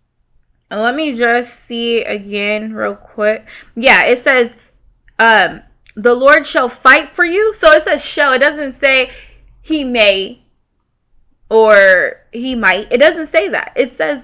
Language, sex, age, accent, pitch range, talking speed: English, female, 20-39, American, 225-290 Hz, 150 wpm